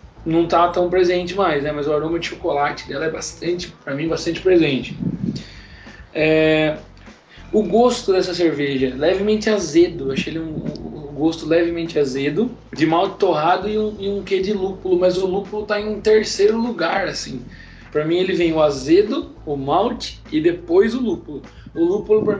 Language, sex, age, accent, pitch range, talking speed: Portuguese, male, 20-39, Brazilian, 155-190 Hz, 175 wpm